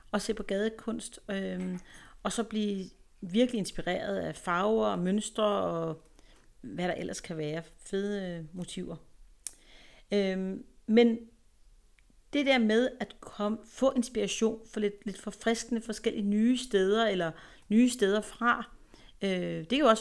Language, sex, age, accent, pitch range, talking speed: Danish, female, 40-59, native, 180-230 Hz, 140 wpm